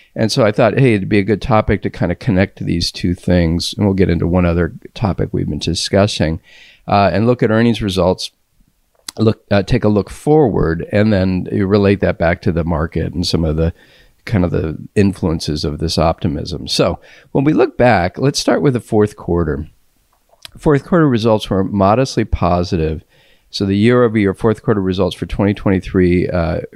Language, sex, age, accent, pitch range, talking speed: English, male, 50-69, American, 90-110 Hz, 195 wpm